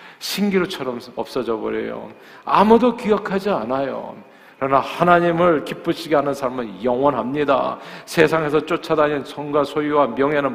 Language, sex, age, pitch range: Korean, male, 40-59, 140-200 Hz